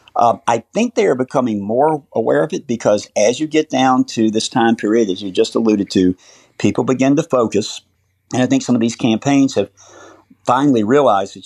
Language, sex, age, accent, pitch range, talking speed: English, male, 50-69, American, 105-130 Hz, 205 wpm